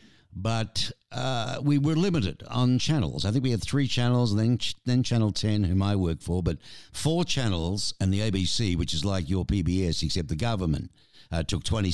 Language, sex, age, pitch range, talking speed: English, male, 60-79, 85-115 Hz, 200 wpm